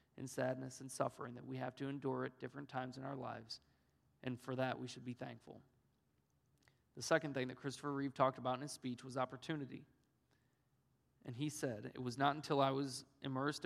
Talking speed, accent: 200 wpm, American